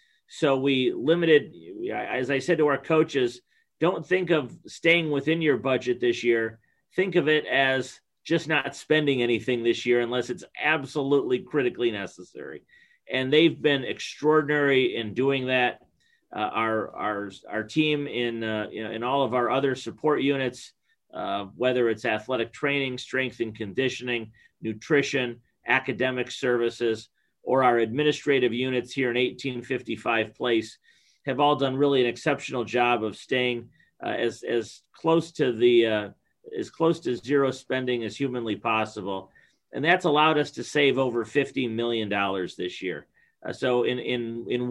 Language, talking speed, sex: English, 155 wpm, male